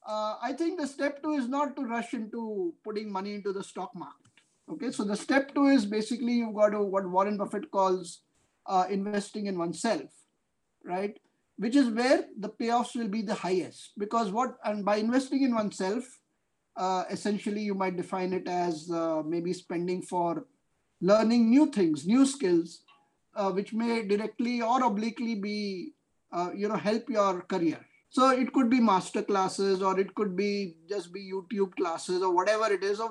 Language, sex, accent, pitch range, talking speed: English, male, Indian, 185-235 Hz, 180 wpm